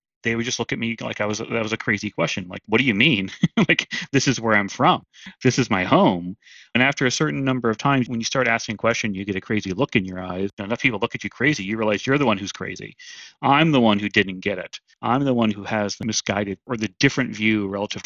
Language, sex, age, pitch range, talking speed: English, male, 30-49, 100-125 Hz, 275 wpm